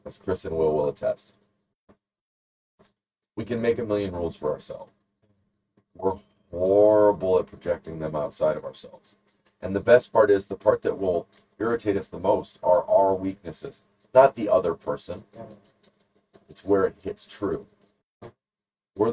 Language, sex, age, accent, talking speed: English, male, 40-59, American, 150 wpm